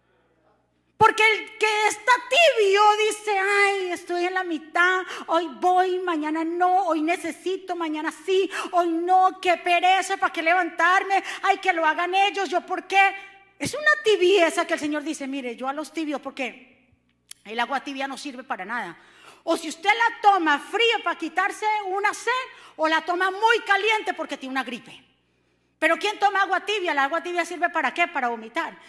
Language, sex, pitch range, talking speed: Spanish, female, 295-375 Hz, 180 wpm